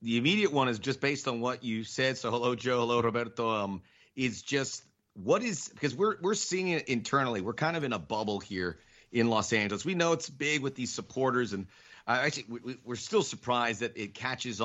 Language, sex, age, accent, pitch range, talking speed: English, male, 40-59, American, 110-130 Hz, 215 wpm